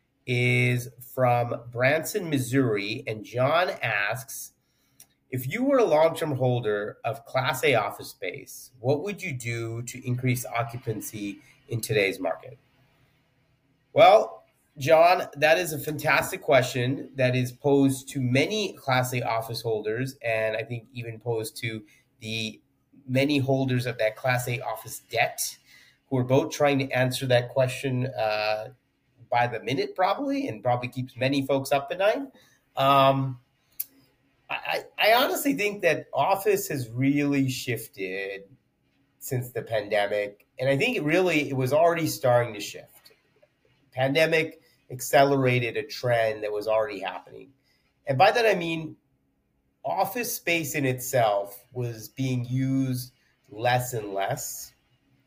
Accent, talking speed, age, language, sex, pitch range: American, 135 wpm, 30-49, English, male, 115-140 Hz